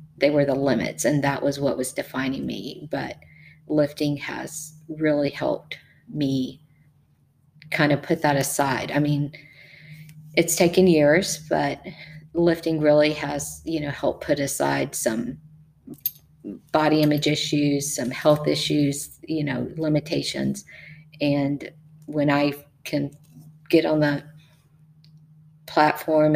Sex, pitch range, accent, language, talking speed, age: female, 145-155 Hz, American, English, 125 wpm, 40-59